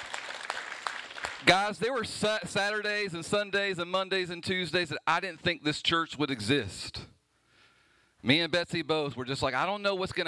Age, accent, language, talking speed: 40-59, American, English, 175 wpm